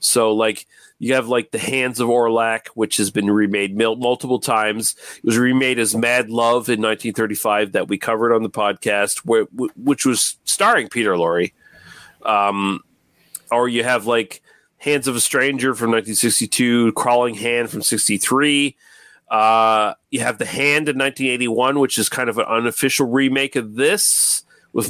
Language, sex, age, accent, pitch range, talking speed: English, male, 30-49, American, 110-135 Hz, 160 wpm